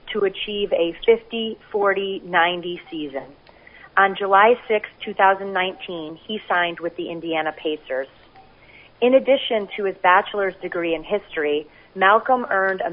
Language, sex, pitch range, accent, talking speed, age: English, female, 165-200 Hz, American, 115 wpm, 30-49